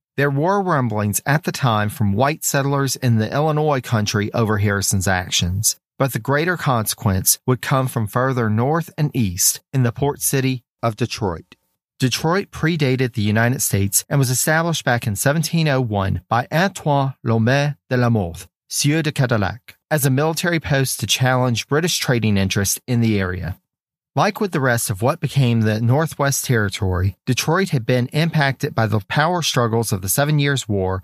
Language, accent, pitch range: English, American, 110-150 Hz